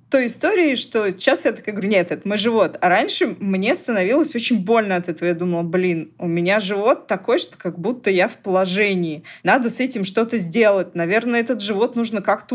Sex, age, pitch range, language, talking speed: female, 20-39, 190-255 Hz, Russian, 200 wpm